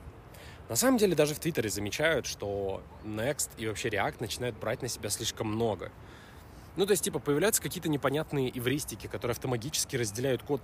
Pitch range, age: 100-150 Hz, 20-39